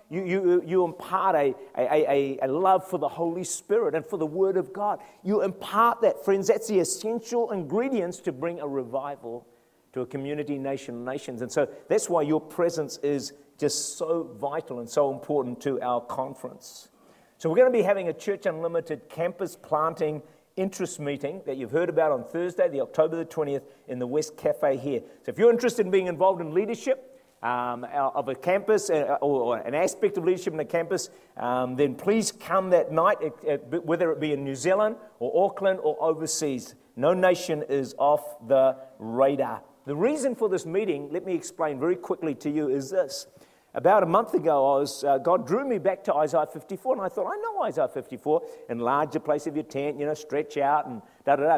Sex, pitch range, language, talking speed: male, 145-195 Hz, English, 200 wpm